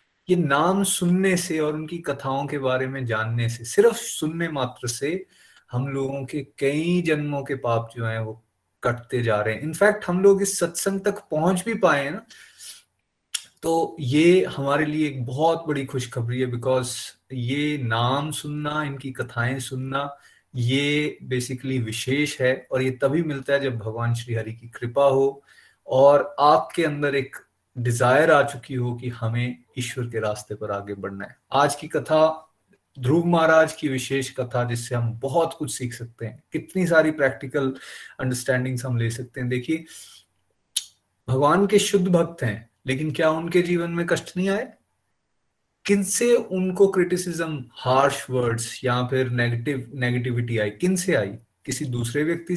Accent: native